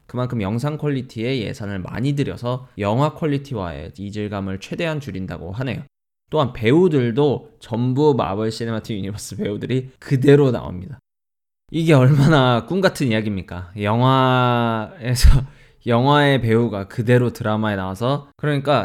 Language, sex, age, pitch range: Korean, male, 20-39, 110-145 Hz